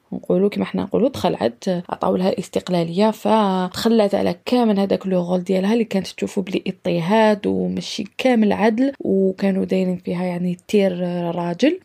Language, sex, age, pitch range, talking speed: Arabic, female, 20-39, 195-245 Hz, 140 wpm